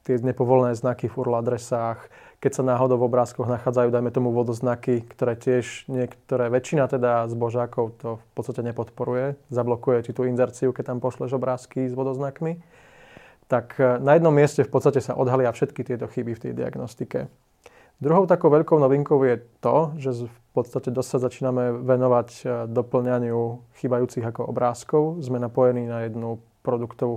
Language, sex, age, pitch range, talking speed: Czech, male, 20-39, 120-130 Hz, 155 wpm